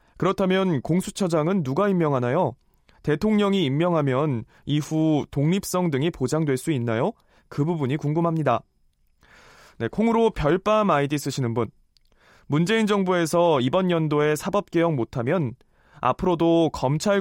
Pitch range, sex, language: 135-190 Hz, male, Korean